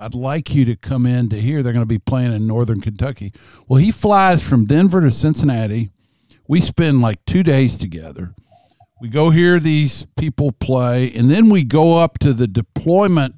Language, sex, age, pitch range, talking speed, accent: English, male, 50-69, 115-145 Hz, 195 wpm, American